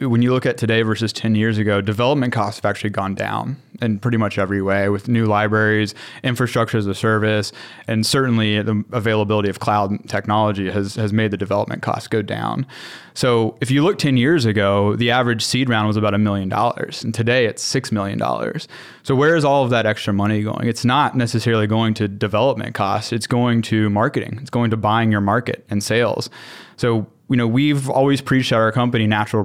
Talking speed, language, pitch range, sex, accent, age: 205 wpm, English, 105-125 Hz, male, American, 20-39